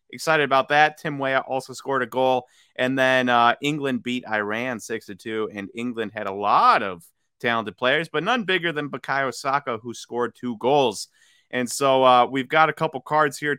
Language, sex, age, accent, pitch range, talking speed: English, male, 30-49, American, 120-155 Hz, 190 wpm